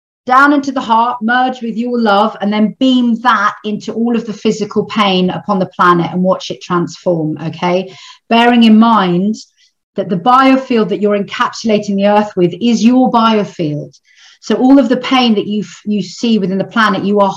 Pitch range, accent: 175-225 Hz, British